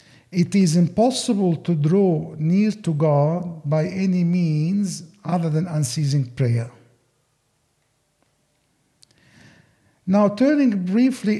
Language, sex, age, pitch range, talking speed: English, male, 50-69, 150-200 Hz, 95 wpm